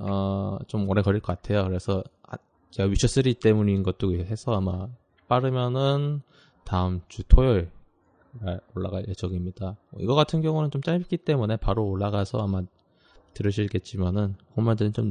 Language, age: Korean, 20-39